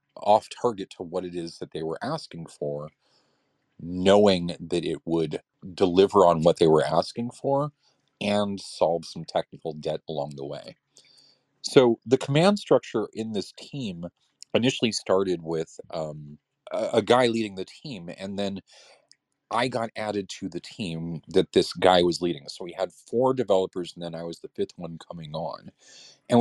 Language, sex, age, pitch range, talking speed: English, male, 40-59, 90-120 Hz, 170 wpm